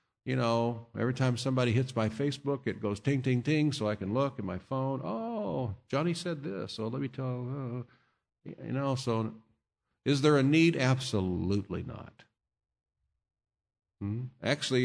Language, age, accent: English, 50-69, American